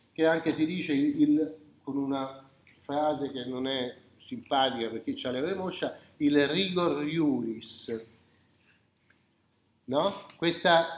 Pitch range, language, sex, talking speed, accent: 150-215 Hz, Italian, male, 125 wpm, native